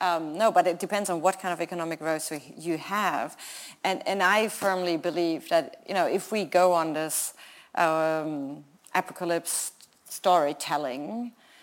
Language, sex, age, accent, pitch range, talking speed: English, female, 30-49, German, 160-190 Hz, 150 wpm